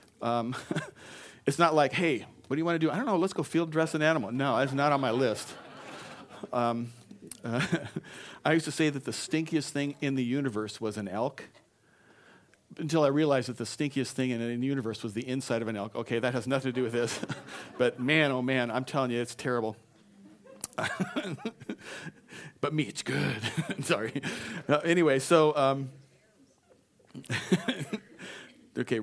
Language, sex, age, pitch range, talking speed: English, male, 40-59, 105-145 Hz, 175 wpm